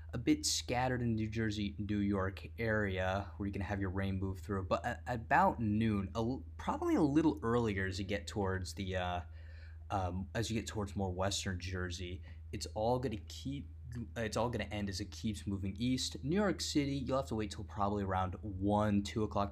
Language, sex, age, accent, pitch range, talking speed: English, male, 20-39, American, 90-105 Hz, 200 wpm